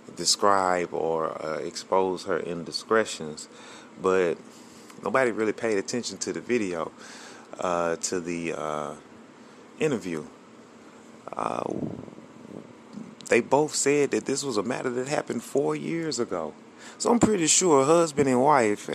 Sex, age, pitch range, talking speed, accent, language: male, 30-49, 95-135 Hz, 125 wpm, American, English